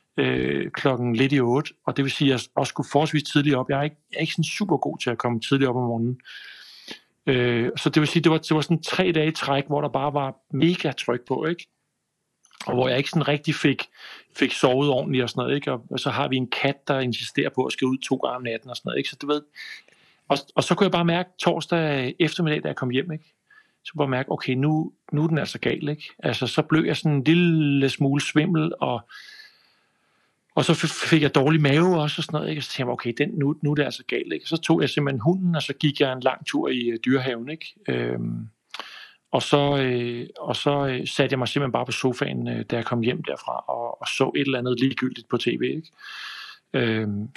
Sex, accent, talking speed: male, native, 245 wpm